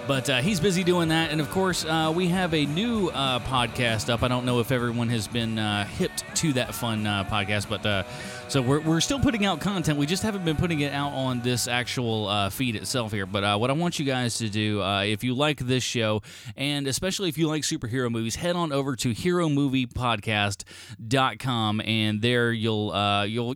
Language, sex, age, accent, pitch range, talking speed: English, male, 30-49, American, 100-130 Hz, 220 wpm